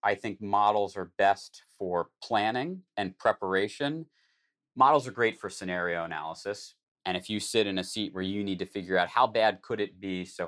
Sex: male